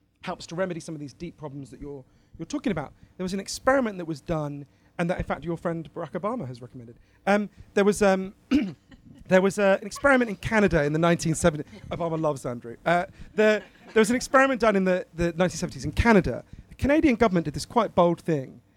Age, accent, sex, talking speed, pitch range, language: 40-59, British, male, 215 wpm, 150-200 Hz, English